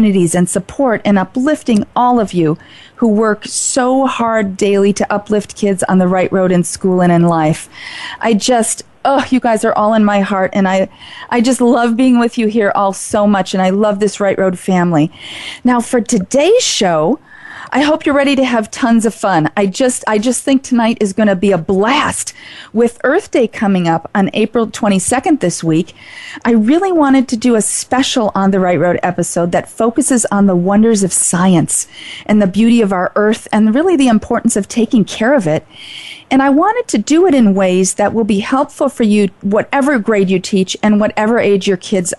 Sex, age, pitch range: female, 40-59, 200-270 Hz